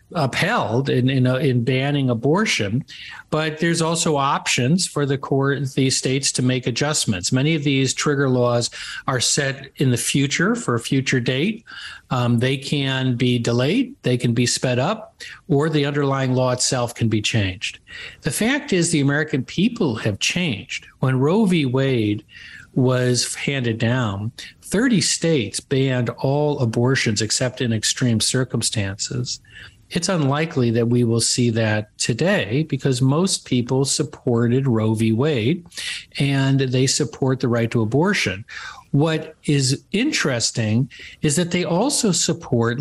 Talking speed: 145 wpm